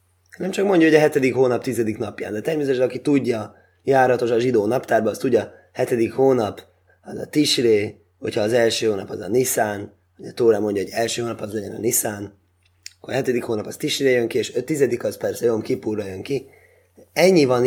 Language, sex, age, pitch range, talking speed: Hungarian, male, 20-39, 90-135 Hz, 205 wpm